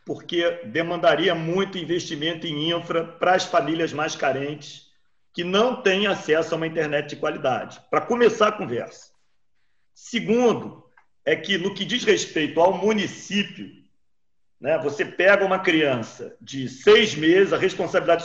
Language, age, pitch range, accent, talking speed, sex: Portuguese, 40-59, 165-210 Hz, Brazilian, 140 wpm, male